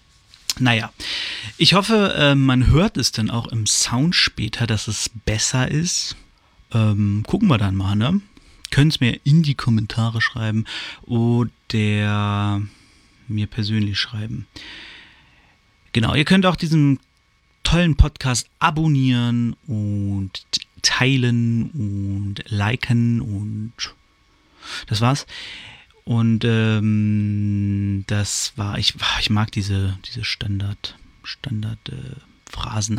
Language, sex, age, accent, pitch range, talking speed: German, male, 30-49, German, 105-135 Hz, 110 wpm